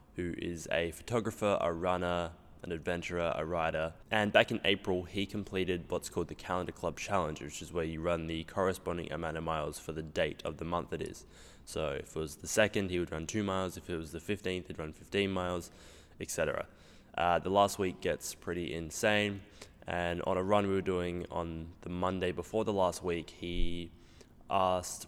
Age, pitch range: 20-39, 85-95 Hz